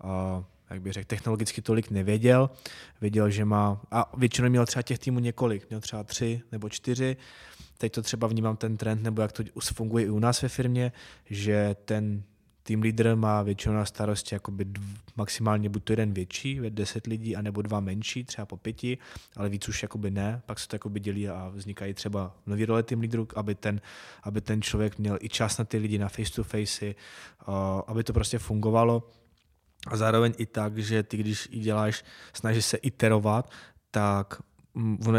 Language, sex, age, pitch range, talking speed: Czech, male, 20-39, 105-115 Hz, 175 wpm